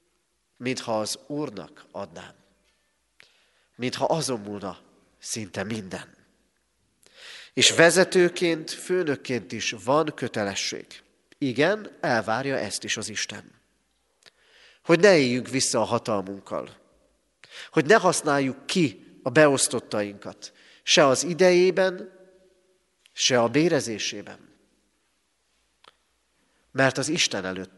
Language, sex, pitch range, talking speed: Hungarian, male, 105-160 Hz, 95 wpm